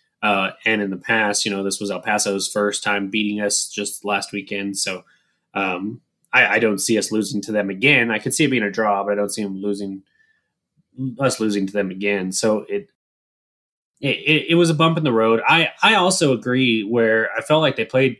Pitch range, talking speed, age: 105-130 Hz, 220 wpm, 20-39